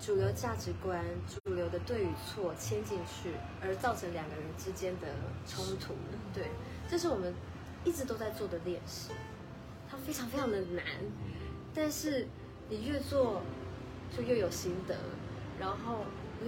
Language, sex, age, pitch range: Chinese, female, 20-39, 185-305 Hz